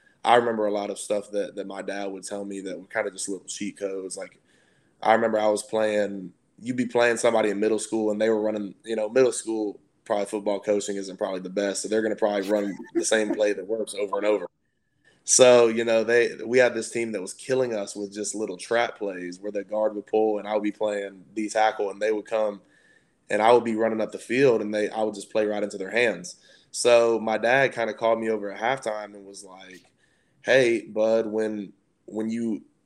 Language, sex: English, male